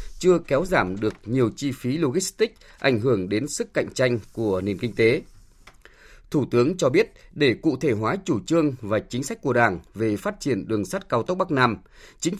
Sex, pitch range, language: male, 115-160 Hz, Vietnamese